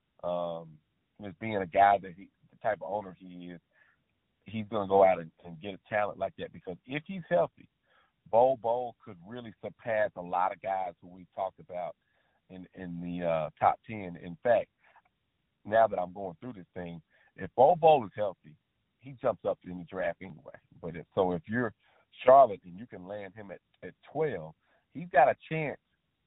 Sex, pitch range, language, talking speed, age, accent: male, 90-135 Hz, English, 195 wpm, 40-59, American